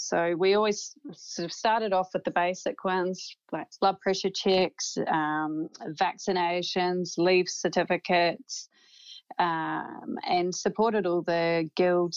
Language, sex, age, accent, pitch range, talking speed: English, female, 30-49, Australian, 170-195 Hz, 125 wpm